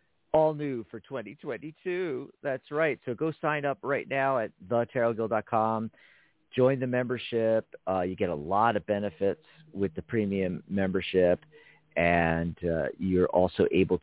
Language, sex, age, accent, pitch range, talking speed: English, male, 50-69, American, 95-125 Hz, 140 wpm